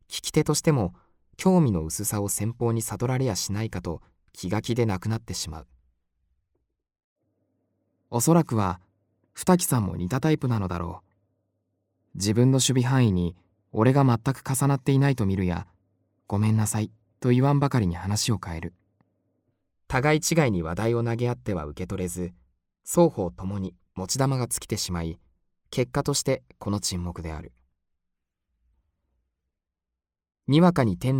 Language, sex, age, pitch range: Japanese, male, 20-39, 85-120 Hz